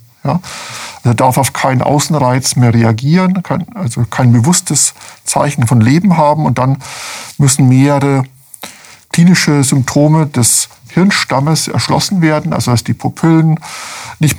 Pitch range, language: 125-150 Hz, German